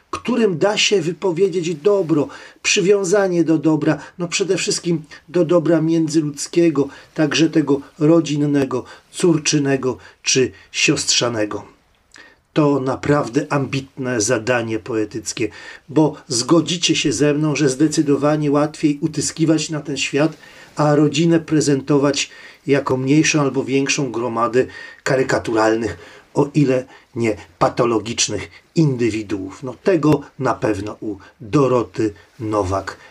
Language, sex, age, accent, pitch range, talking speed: Polish, male, 40-59, native, 135-165 Hz, 105 wpm